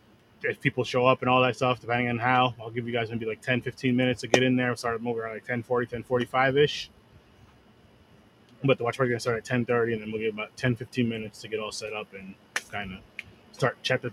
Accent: American